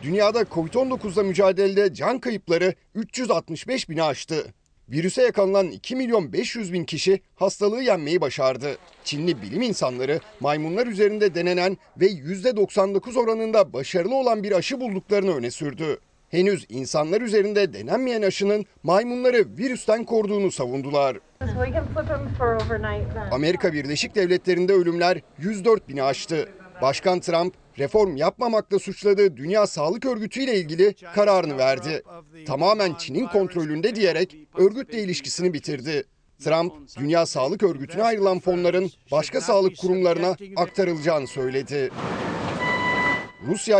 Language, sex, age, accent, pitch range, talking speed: Turkish, male, 40-59, native, 150-205 Hz, 110 wpm